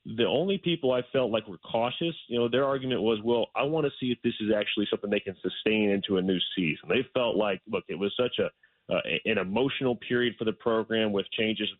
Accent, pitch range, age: American, 105-135 Hz, 30-49